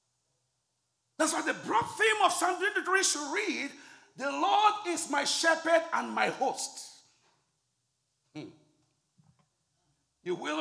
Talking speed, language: 120 wpm, English